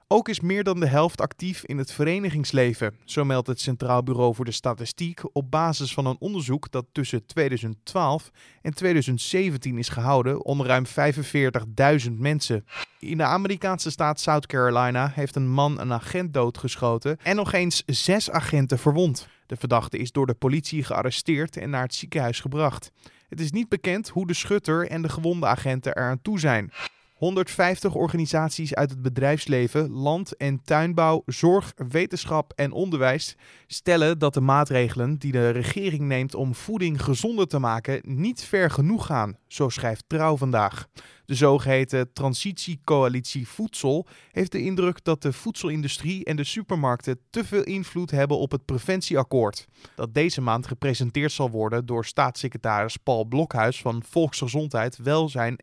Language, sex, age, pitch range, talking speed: Dutch, male, 20-39, 125-165 Hz, 155 wpm